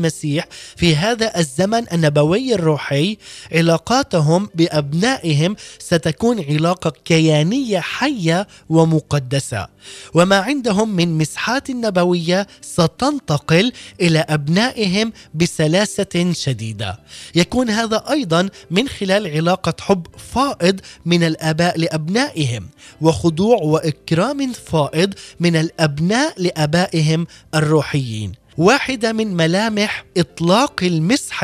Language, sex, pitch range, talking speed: Arabic, male, 155-205 Hz, 85 wpm